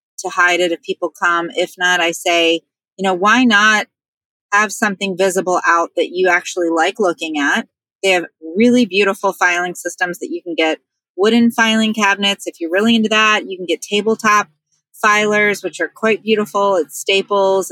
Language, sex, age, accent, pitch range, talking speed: English, female, 30-49, American, 175-215 Hz, 180 wpm